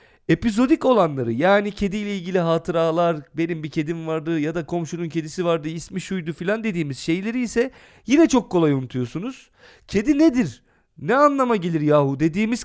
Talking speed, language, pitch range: 150 wpm, Turkish, 150-225 Hz